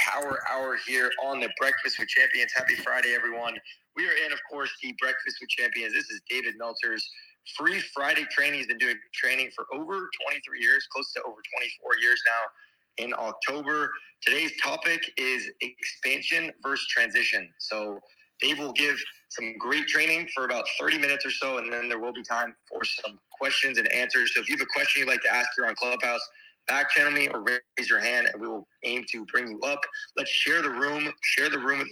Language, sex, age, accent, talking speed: English, male, 20-39, American, 205 wpm